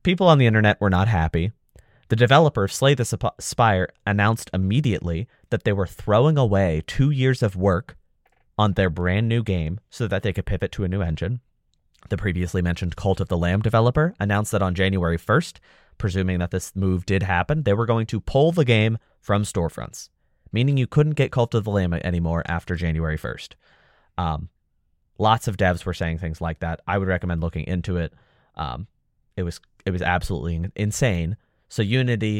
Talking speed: 185 wpm